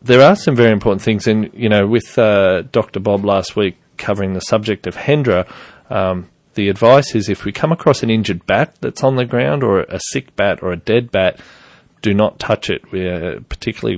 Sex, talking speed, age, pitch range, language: male, 200 wpm, 30-49, 90-110 Hz, English